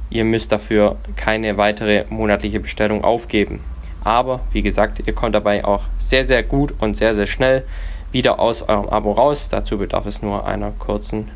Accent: German